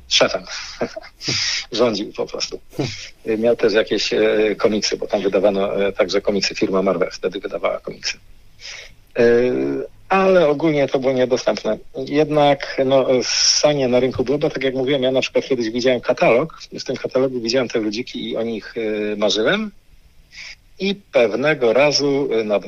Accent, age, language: native, 50-69, Polish